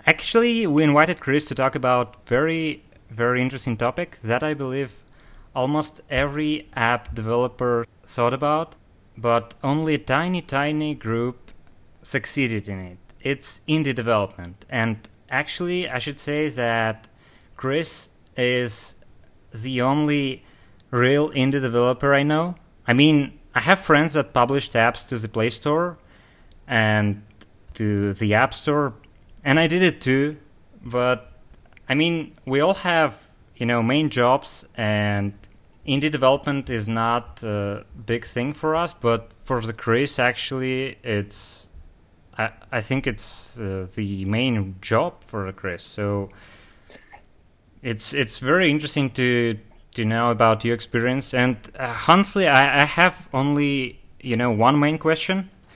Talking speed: 140 wpm